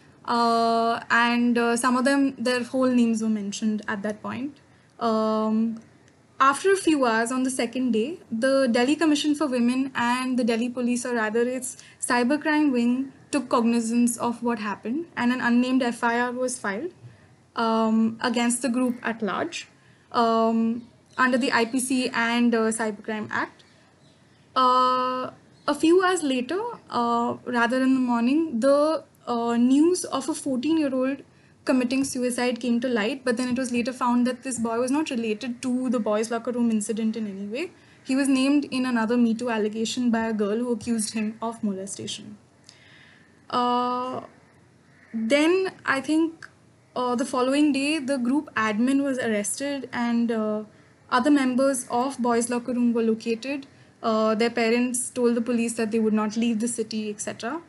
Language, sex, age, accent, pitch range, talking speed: English, female, 10-29, Indian, 230-265 Hz, 160 wpm